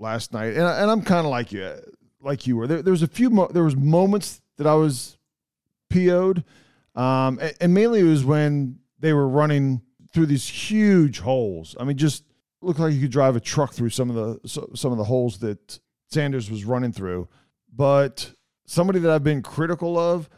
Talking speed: 200 wpm